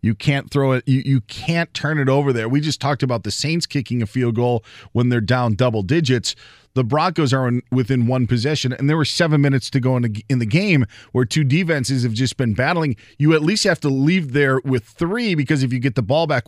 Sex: male